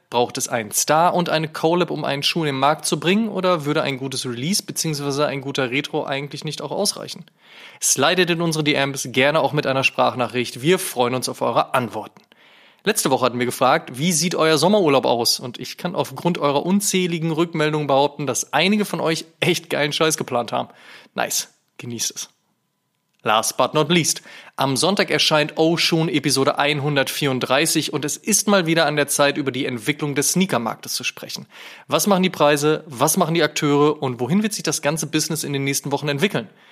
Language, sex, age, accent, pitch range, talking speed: German, male, 20-39, German, 140-170 Hz, 195 wpm